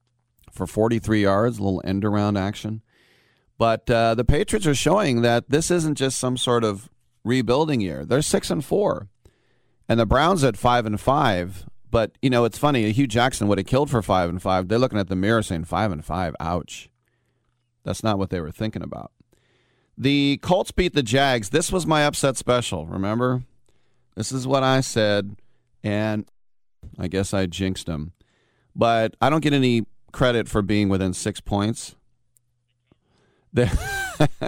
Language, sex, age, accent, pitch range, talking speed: English, male, 40-59, American, 100-125 Hz, 175 wpm